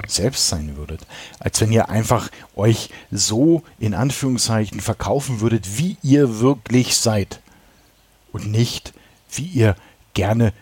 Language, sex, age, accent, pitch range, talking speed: German, male, 50-69, German, 100-125 Hz, 125 wpm